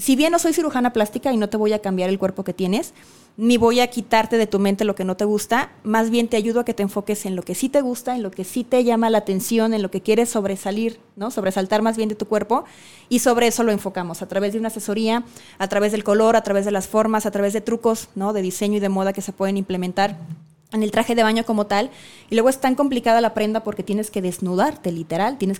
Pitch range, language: 195-235 Hz, Spanish